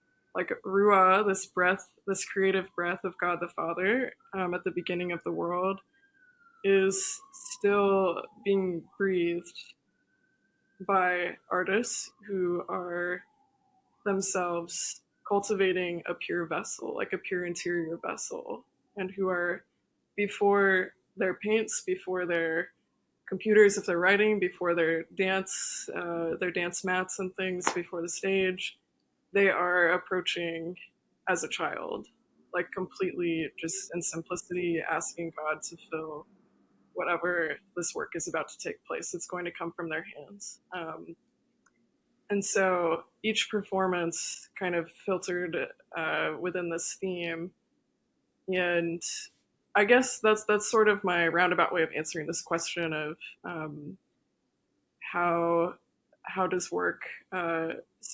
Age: 20-39